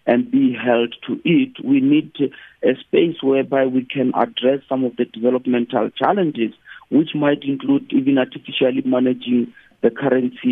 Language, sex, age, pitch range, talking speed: English, male, 50-69, 125-160 Hz, 150 wpm